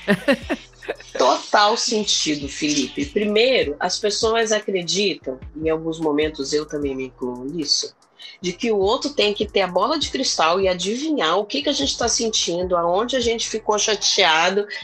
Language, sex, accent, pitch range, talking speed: Portuguese, female, Brazilian, 155-235 Hz, 160 wpm